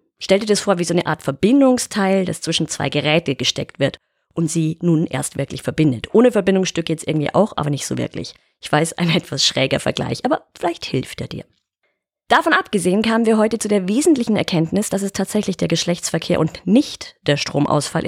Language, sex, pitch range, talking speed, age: German, female, 155-200 Hz, 195 wpm, 30-49